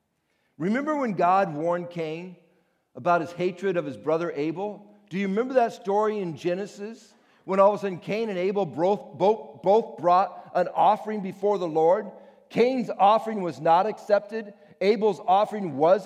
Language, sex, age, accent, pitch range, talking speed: English, male, 50-69, American, 165-215 Hz, 165 wpm